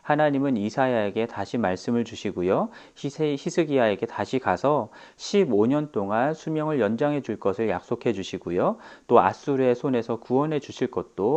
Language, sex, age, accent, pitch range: Korean, male, 40-59, native, 110-155 Hz